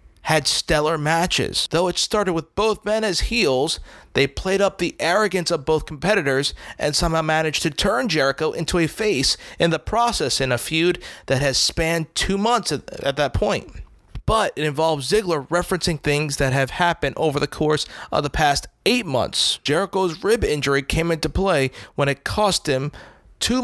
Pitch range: 140-175 Hz